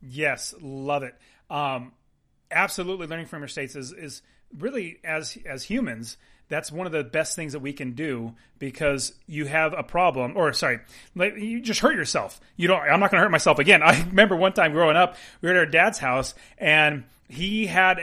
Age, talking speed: 30-49, 200 wpm